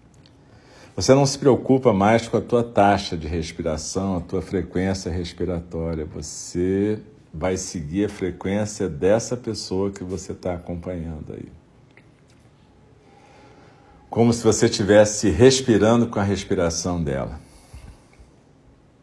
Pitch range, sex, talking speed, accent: 90-115 Hz, male, 115 wpm, Brazilian